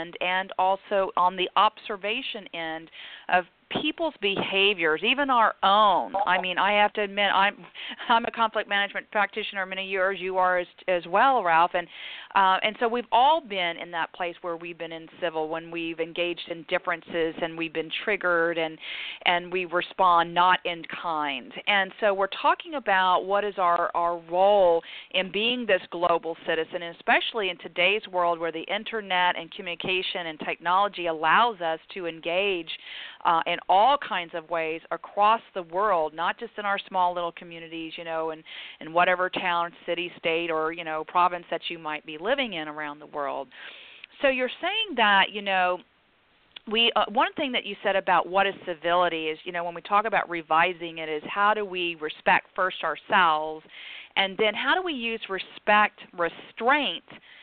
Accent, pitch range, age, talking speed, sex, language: American, 170-205 Hz, 40-59, 180 wpm, female, English